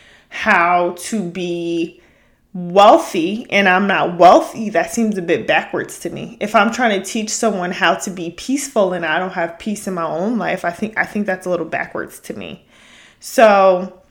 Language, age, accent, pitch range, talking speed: English, 20-39, American, 180-215 Hz, 190 wpm